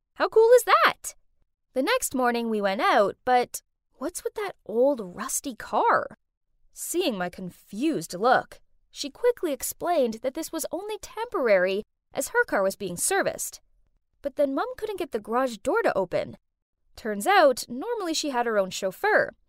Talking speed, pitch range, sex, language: 165 wpm, 220-320 Hz, female, English